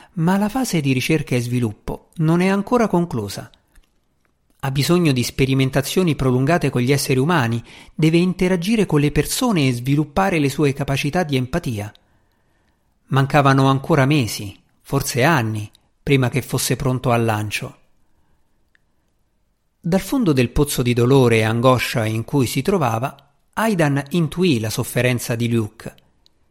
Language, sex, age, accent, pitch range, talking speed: Italian, male, 50-69, native, 115-170 Hz, 140 wpm